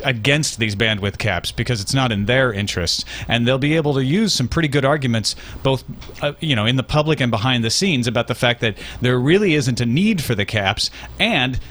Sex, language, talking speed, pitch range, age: male, English, 225 wpm, 115-155 Hz, 40-59